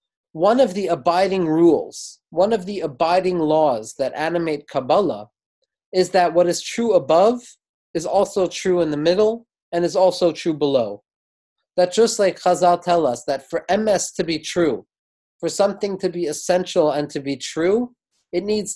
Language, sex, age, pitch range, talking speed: English, male, 30-49, 155-185 Hz, 170 wpm